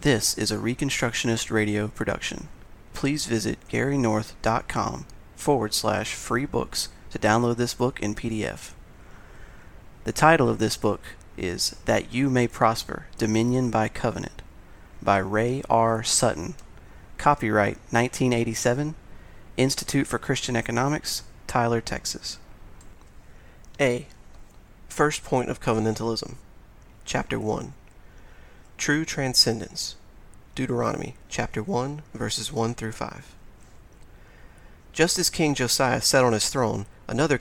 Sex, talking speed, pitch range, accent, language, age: male, 110 wpm, 110-130 Hz, American, English, 30-49